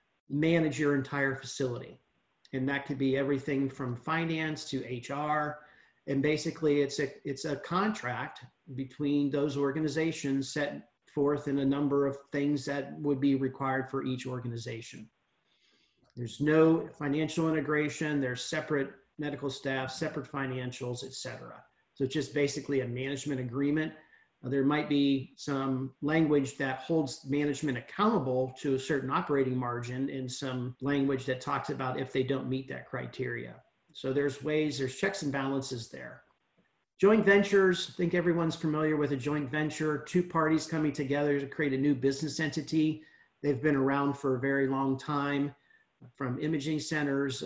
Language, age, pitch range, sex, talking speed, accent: English, 40-59, 135-150 Hz, male, 150 wpm, American